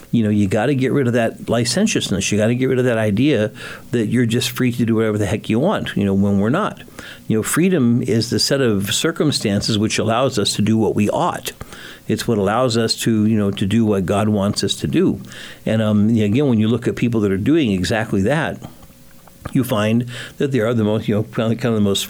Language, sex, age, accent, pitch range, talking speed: English, male, 60-79, American, 105-125 Hz, 245 wpm